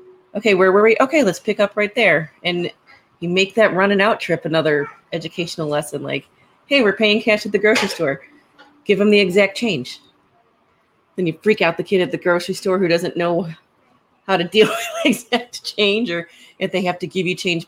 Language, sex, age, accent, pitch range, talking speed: English, female, 30-49, American, 165-205 Hz, 210 wpm